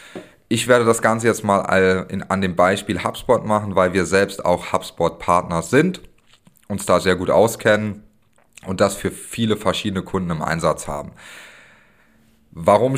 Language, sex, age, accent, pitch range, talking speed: German, male, 30-49, German, 95-125 Hz, 155 wpm